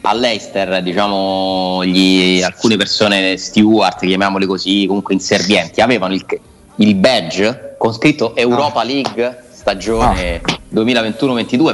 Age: 30-49